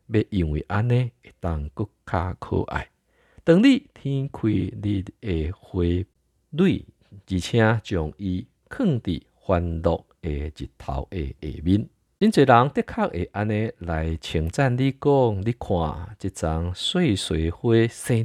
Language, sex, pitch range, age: Chinese, male, 85-110 Hz, 50-69